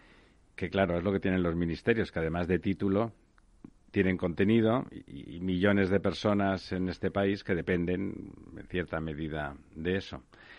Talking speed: 160 wpm